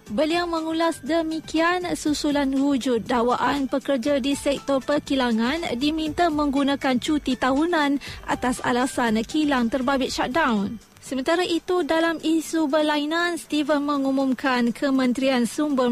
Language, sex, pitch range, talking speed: Malay, female, 245-295 Hz, 105 wpm